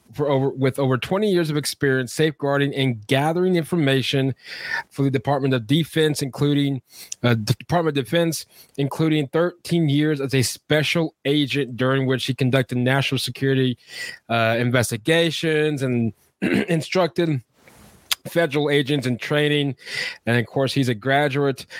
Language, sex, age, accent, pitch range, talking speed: English, male, 20-39, American, 125-150 Hz, 140 wpm